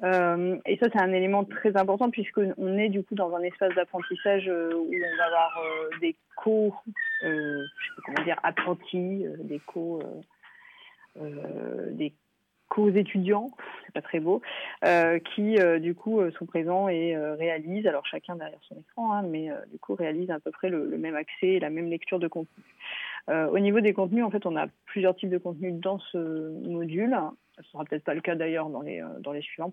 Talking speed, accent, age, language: 200 wpm, French, 30-49, French